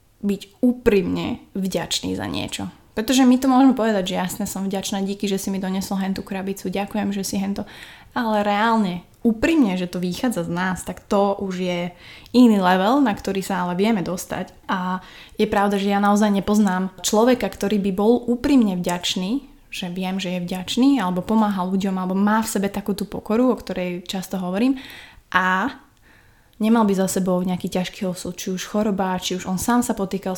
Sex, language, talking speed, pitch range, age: female, Slovak, 185 wpm, 185-215 Hz, 20-39